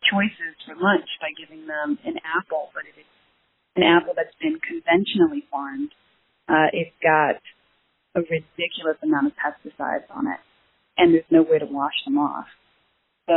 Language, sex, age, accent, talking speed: English, female, 30-49, American, 165 wpm